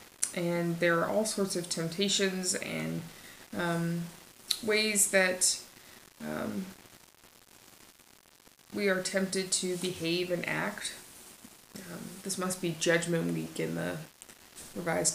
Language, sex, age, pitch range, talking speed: English, female, 20-39, 155-180 Hz, 110 wpm